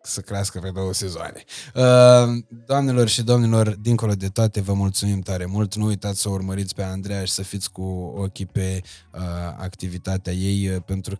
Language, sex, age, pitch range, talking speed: Romanian, male, 20-39, 100-120 Hz, 160 wpm